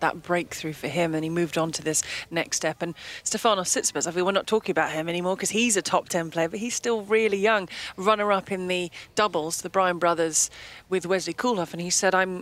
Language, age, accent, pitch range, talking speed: English, 30-49, British, 180-215 Hz, 235 wpm